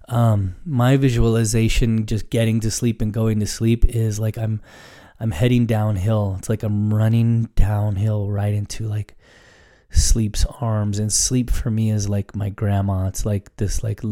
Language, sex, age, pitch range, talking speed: English, male, 20-39, 105-115 Hz, 165 wpm